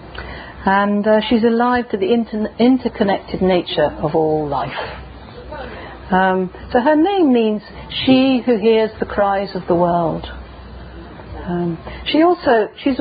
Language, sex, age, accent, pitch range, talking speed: English, female, 50-69, British, 175-235 Hz, 135 wpm